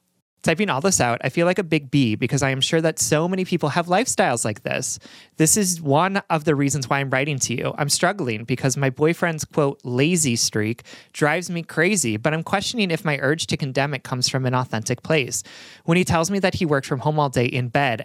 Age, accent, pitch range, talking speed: 30-49, American, 130-170 Hz, 235 wpm